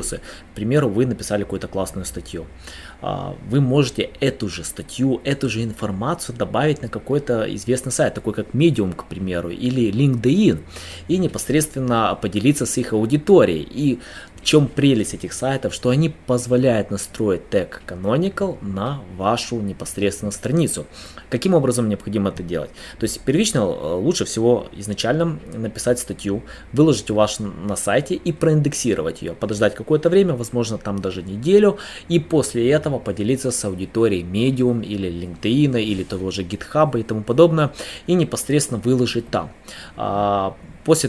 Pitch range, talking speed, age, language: 105-140 Hz, 145 wpm, 20-39, Russian